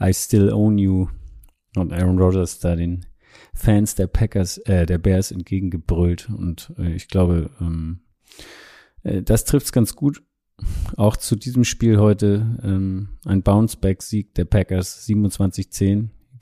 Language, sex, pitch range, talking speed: German, male, 90-105 Hz, 145 wpm